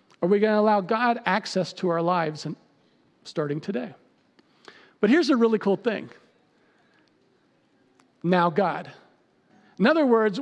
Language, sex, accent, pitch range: English, male, American, 205-270 Hz